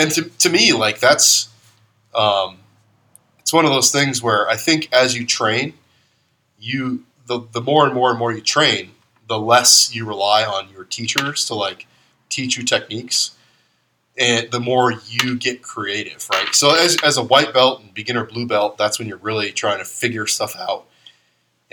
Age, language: 20-39, English